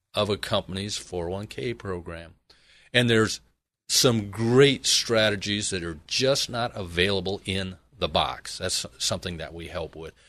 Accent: American